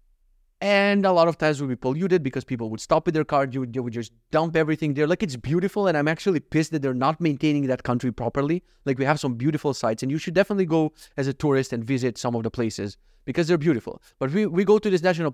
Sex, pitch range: male, 130-180 Hz